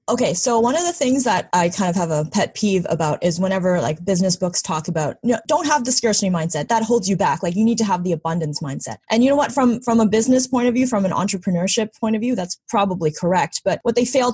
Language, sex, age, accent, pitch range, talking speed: English, female, 20-39, American, 165-210 Hz, 270 wpm